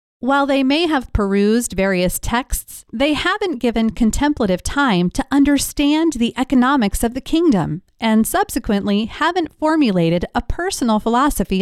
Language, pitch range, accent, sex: English, 205-275 Hz, American, female